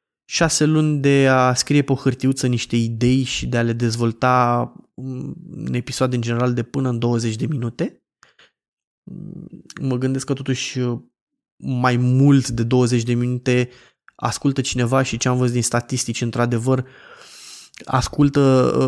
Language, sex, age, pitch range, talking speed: Romanian, male, 20-39, 120-140 Hz, 140 wpm